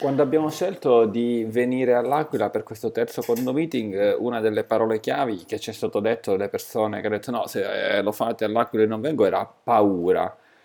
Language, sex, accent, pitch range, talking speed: Italian, male, native, 105-120 Hz, 190 wpm